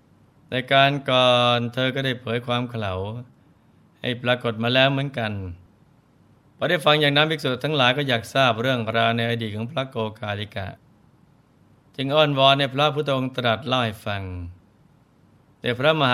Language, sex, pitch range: Thai, male, 110-135 Hz